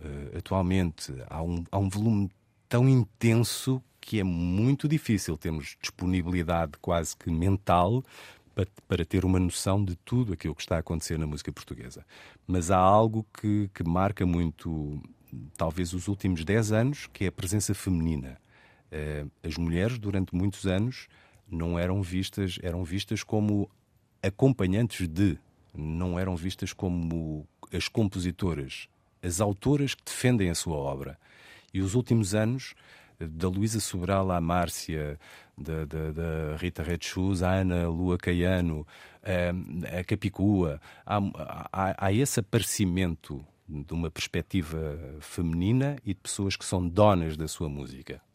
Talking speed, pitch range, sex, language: 145 wpm, 85-110 Hz, male, Portuguese